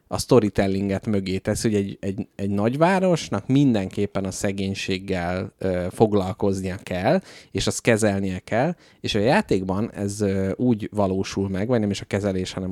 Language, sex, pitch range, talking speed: Hungarian, male, 100-120 Hz, 140 wpm